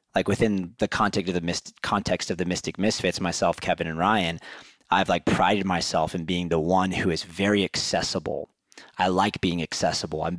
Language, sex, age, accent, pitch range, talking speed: English, male, 30-49, American, 90-105 Hz, 175 wpm